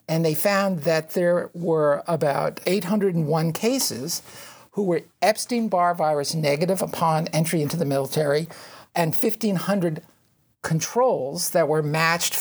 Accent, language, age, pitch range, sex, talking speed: American, English, 50-69, 155-190 Hz, male, 120 wpm